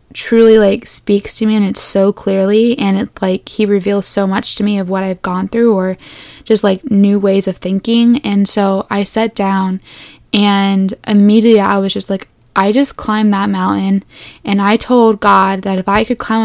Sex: female